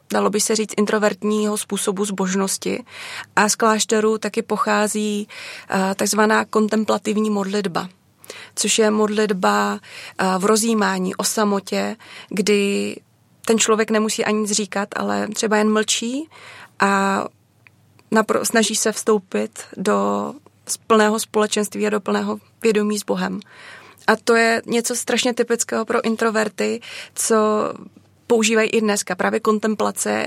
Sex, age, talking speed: female, 20-39, 120 wpm